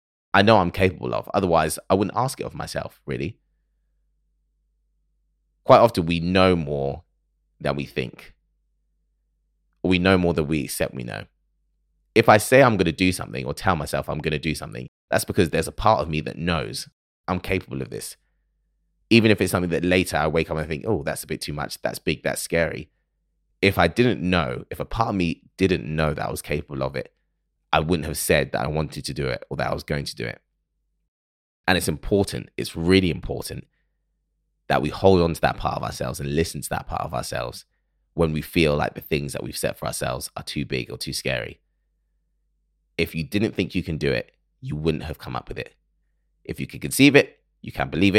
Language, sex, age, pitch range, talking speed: English, male, 20-39, 70-95 Hz, 220 wpm